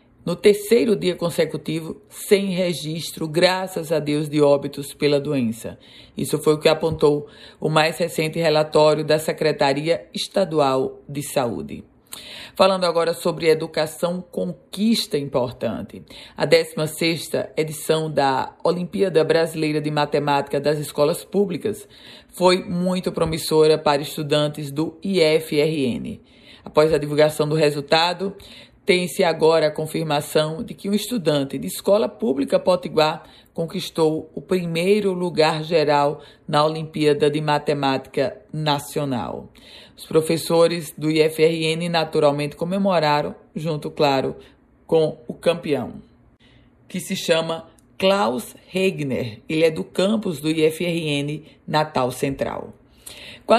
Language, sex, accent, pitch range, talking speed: Portuguese, female, Brazilian, 150-185 Hz, 115 wpm